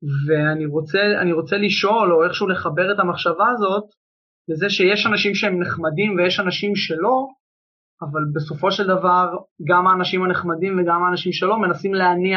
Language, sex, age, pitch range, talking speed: Hebrew, male, 20-39, 165-190 Hz, 145 wpm